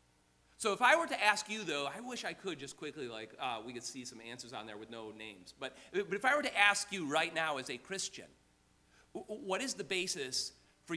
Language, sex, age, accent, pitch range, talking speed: English, male, 40-59, American, 135-220 Hz, 240 wpm